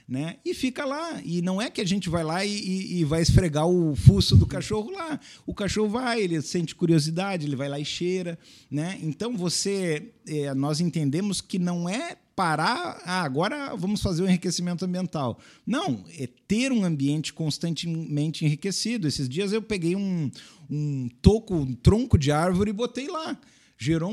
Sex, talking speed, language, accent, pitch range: male, 180 wpm, Portuguese, Brazilian, 135-185 Hz